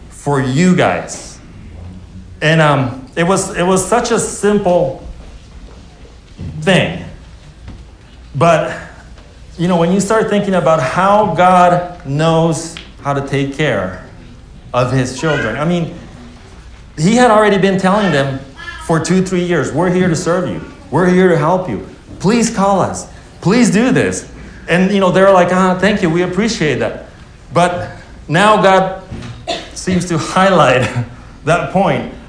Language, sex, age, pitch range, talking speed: English, male, 40-59, 135-185 Hz, 145 wpm